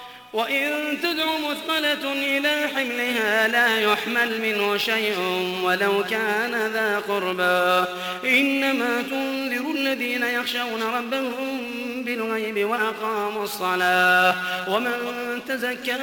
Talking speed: 85 wpm